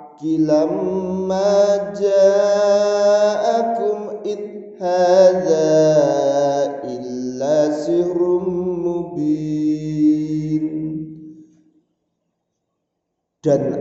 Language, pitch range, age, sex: Indonesian, 135-160 Hz, 40-59, male